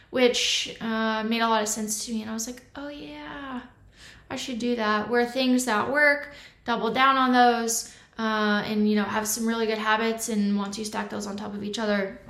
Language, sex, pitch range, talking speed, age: English, female, 215-255 Hz, 225 wpm, 20-39